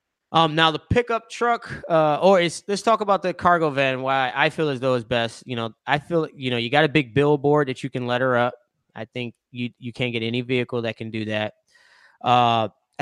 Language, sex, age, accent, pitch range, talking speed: English, male, 20-39, American, 115-145 Hz, 230 wpm